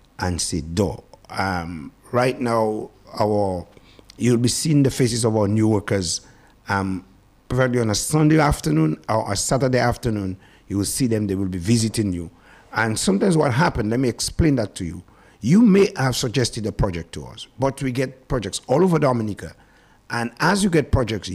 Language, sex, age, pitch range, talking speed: English, male, 50-69, 100-130 Hz, 180 wpm